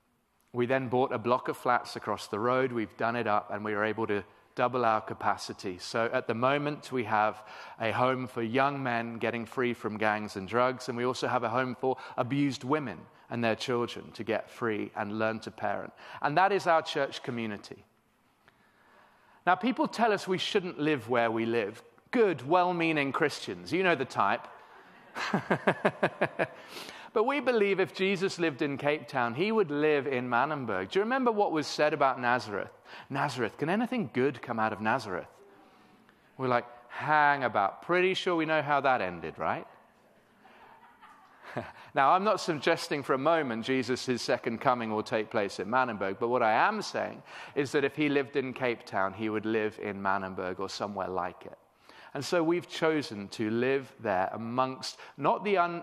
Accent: British